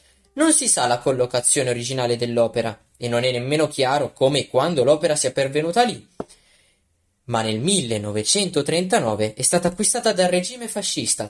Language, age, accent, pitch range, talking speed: Italian, 20-39, native, 120-155 Hz, 150 wpm